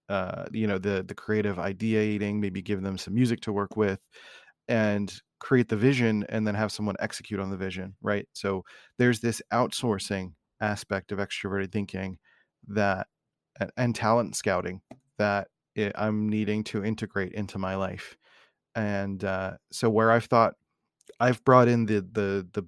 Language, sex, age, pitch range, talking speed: English, male, 30-49, 100-110 Hz, 160 wpm